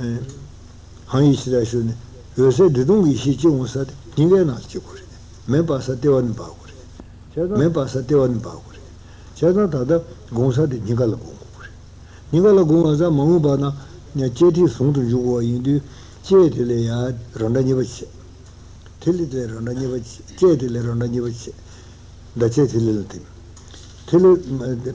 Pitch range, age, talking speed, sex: 105-140 Hz, 60-79, 50 wpm, male